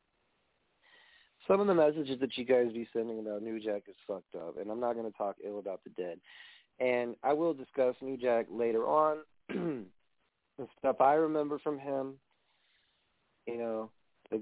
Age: 30-49